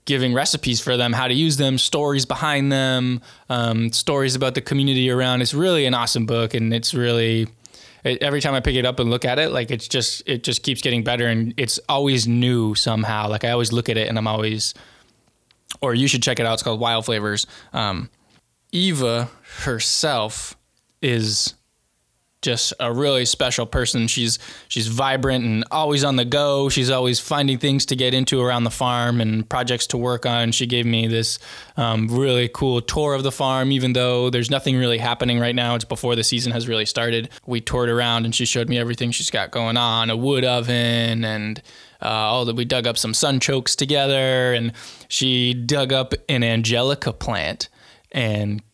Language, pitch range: English, 115-130 Hz